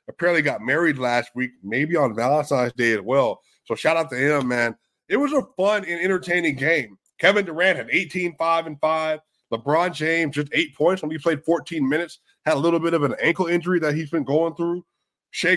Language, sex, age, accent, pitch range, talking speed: English, male, 20-39, American, 140-170 Hz, 210 wpm